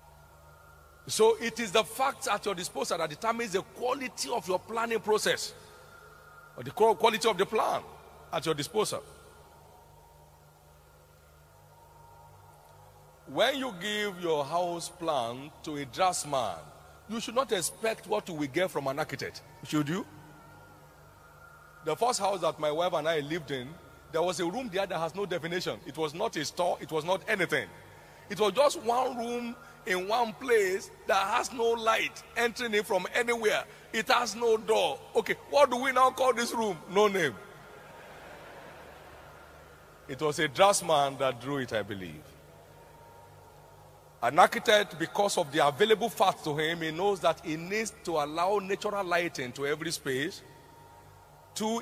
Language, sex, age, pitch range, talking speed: English, male, 50-69, 150-220 Hz, 155 wpm